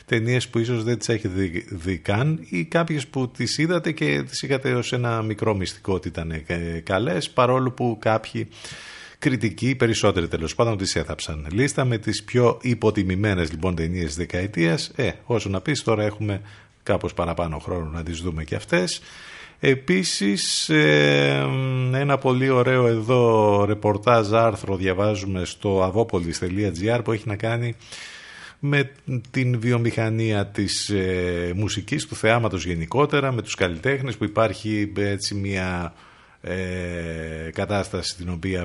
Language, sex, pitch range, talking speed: Greek, male, 90-120 Hz, 140 wpm